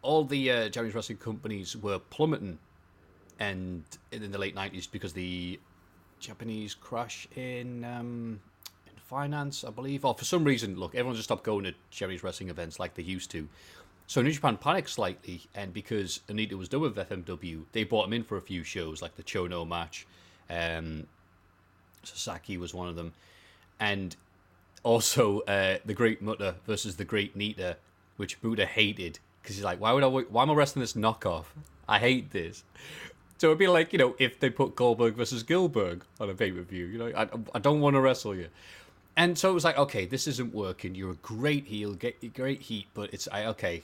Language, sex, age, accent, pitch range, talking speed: English, male, 30-49, British, 90-115 Hz, 195 wpm